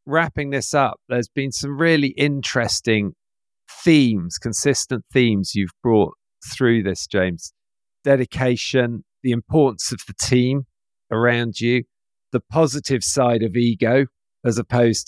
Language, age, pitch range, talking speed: English, 50-69, 105-135 Hz, 125 wpm